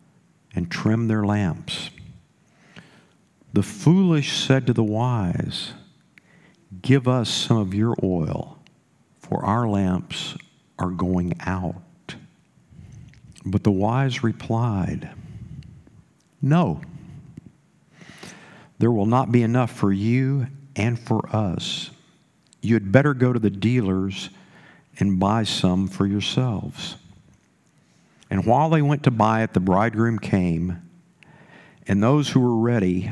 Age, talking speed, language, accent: 50-69, 115 wpm, English, American